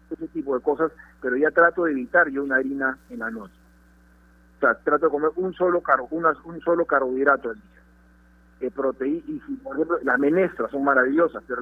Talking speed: 195 wpm